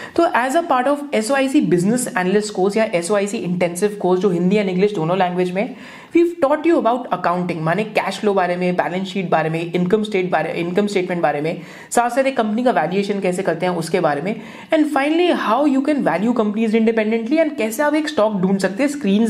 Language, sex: Hindi, female